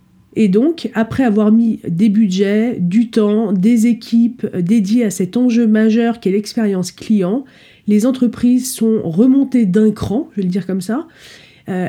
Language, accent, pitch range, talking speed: French, French, 200-245 Hz, 160 wpm